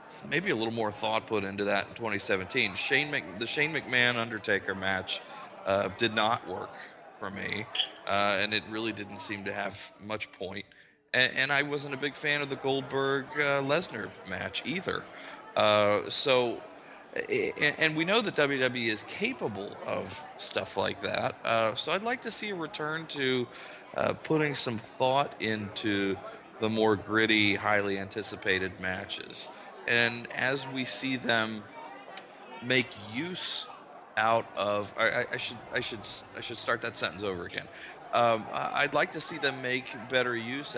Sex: male